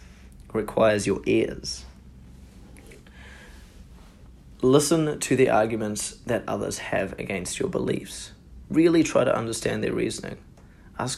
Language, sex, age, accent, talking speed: English, male, 30-49, Australian, 105 wpm